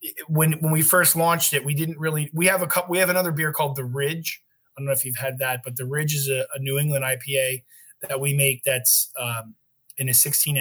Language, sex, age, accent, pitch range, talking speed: English, male, 30-49, American, 135-160 Hz, 250 wpm